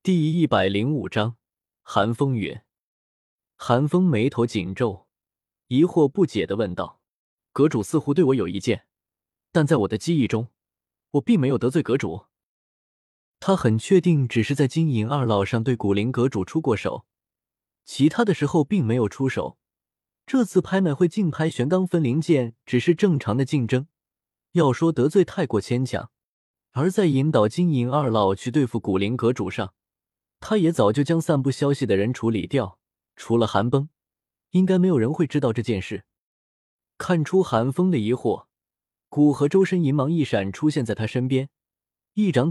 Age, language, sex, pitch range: 20-39, Chinese, male, 115-165 Hz